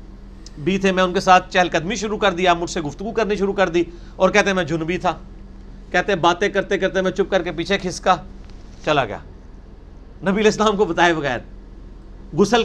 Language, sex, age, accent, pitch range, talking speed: English, male, 50-69, Indian, 175-210 Hz, 200 wpm